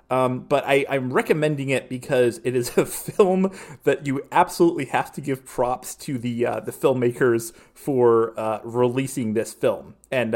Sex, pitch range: male, 110-135 Hz